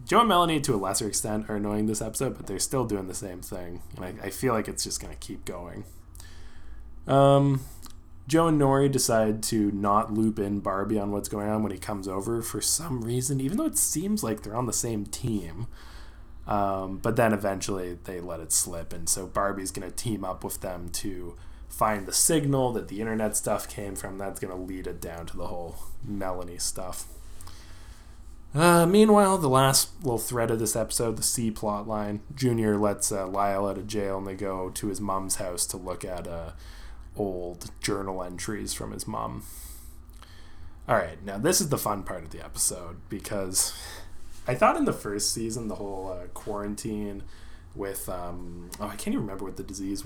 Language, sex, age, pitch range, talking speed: English, male, 20-39, 85-110 Hz, 195 wpm